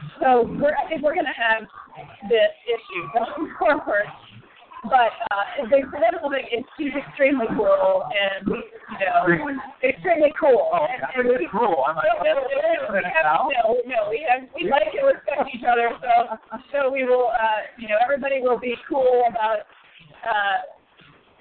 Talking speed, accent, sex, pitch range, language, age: 145 wpm, American, female, 220-285 Hz, English, 30-49